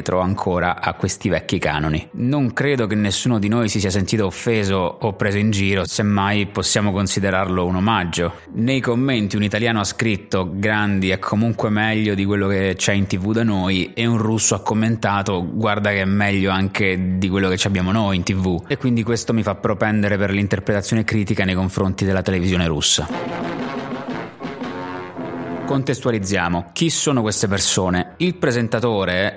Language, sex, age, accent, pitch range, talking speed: Italian, male, 20-39, native, 95-115 Hz, 165 wpm